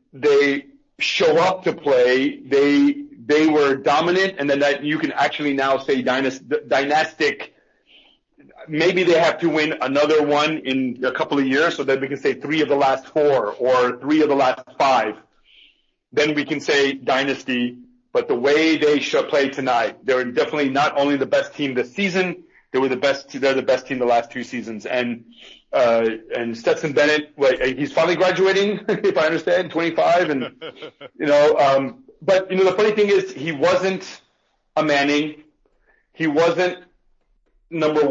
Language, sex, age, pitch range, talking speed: German, male, 40-59, 135-175 Hz, 175 wpm